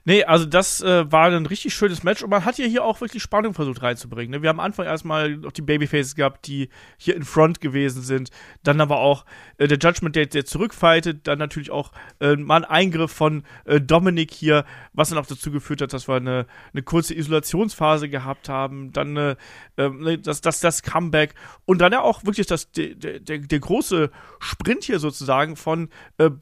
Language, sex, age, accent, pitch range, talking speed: German, male, 40-59, German, 150-180 Hz, 205 wpm